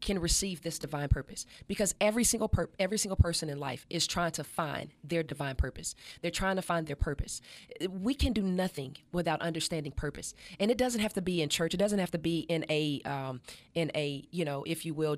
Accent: American